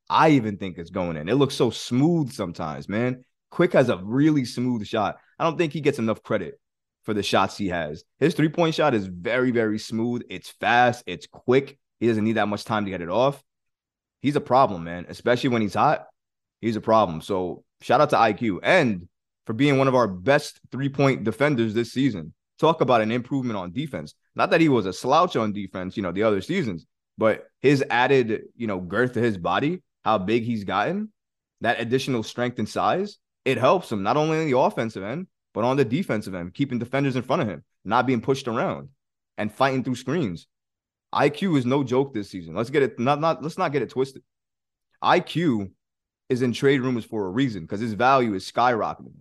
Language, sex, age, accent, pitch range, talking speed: English, male, 20-39, American, 105-140 Hz, 210 wpm